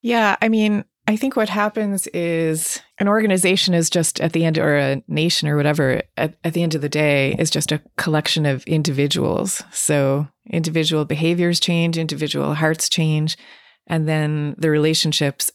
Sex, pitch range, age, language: female, 145-170 Hz, 30-49, English